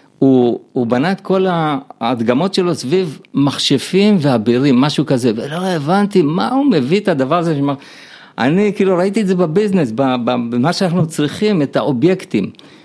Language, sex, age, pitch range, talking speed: Hebrew, male, 50-69, 115-180 Hz, 145 wpm